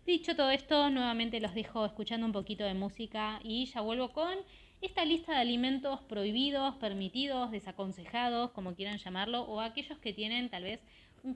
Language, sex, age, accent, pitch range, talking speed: Spanish, female, 20-39, Argentinian, 195-250 Hz, 170 wpm